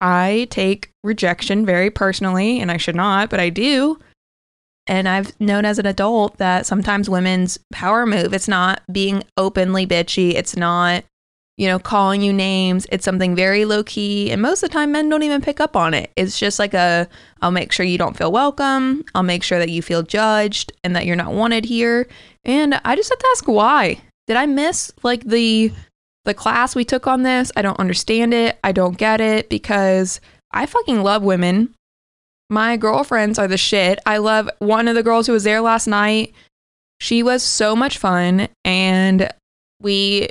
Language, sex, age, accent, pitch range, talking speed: English, female, 20-39, American, 190-230 Hz, 190 wpm